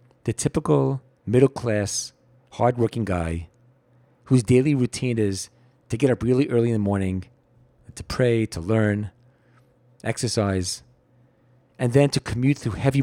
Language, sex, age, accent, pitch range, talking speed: English, male, 40-59, American, 110-130 Hz, 130 wpm